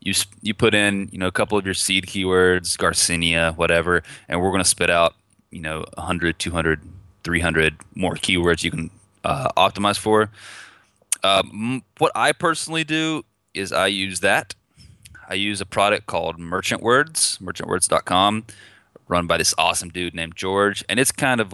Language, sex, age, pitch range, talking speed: English, male, 20-39, 85-105 Hz, 170 wpm